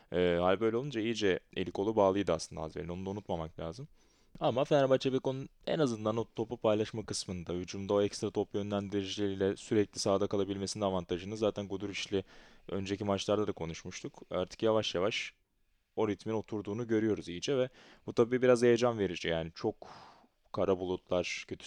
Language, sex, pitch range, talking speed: Turkish, male, 90-110 Hz, 160 wpm